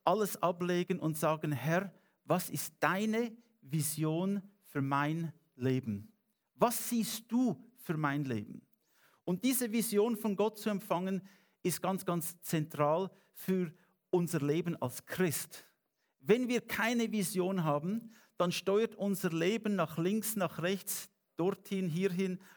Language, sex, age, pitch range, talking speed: English, male, 50-69, 160-200 Hz, 130 wpm